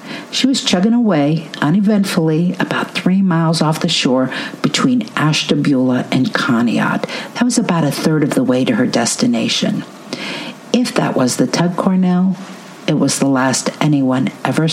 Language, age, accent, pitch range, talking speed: English, 50-69, American, 165-235 Hz, 155 wpm